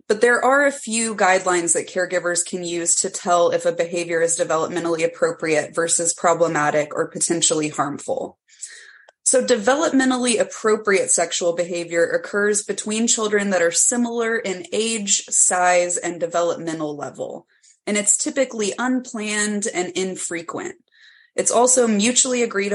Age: 20-39